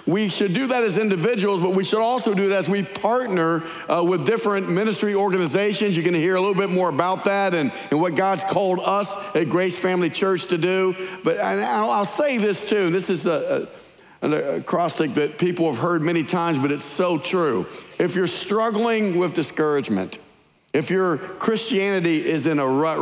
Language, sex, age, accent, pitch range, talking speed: English, male, 50-69, American, 165-210 Hz, 200 wpm